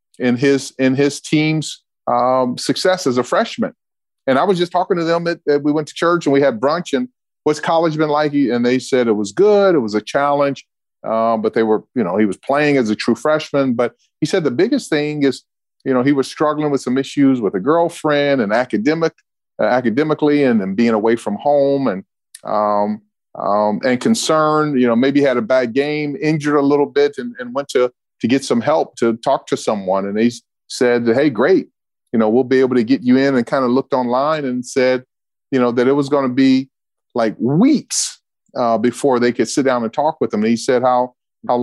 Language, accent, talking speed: English, American, 230 wpm